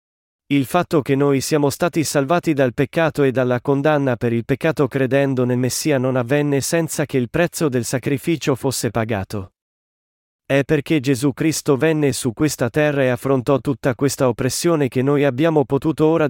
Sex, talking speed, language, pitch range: male, 170 wpm, Italian, 125-155 Hz